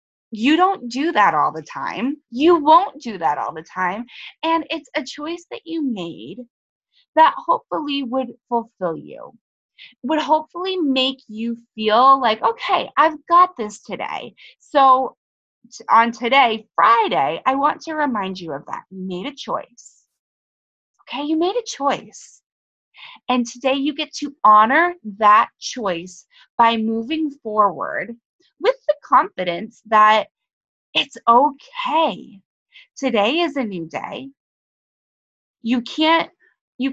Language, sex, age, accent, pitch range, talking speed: English, female, 20-39, American, 215-300 Hz, 125 wpm